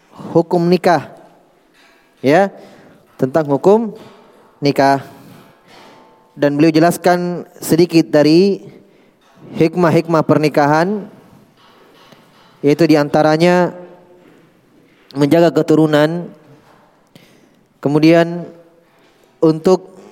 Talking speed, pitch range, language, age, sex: 55 wpm, 155-175 Hz, Indonesian, 20-39, male